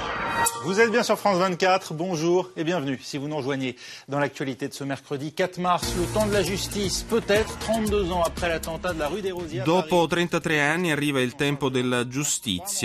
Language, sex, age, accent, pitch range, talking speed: Italian, male, 30-49, native, 110-140 Hz, 120 wpm